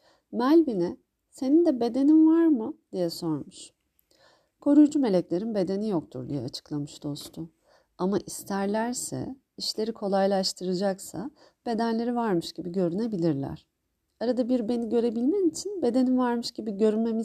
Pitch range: 170-250 Hz